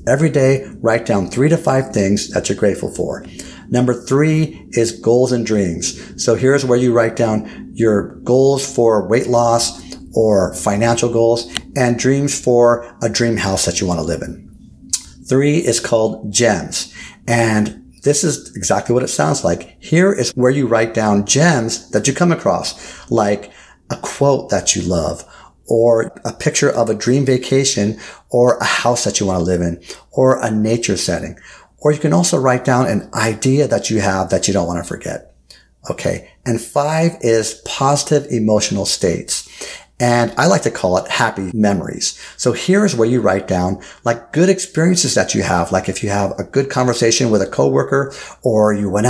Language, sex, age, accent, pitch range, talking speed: English, male, 50-69, American, 105-135 Hz, 185 wpm